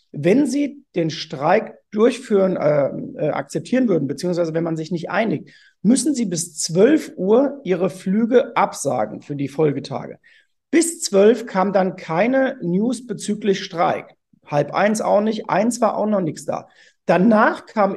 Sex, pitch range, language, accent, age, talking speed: male, 170-225 Hz, German, German, 40-59, 155 wpm